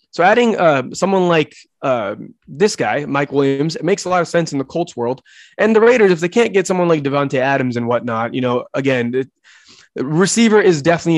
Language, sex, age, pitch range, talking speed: English, male, 20-39, 135-175 Hz, 215 wpm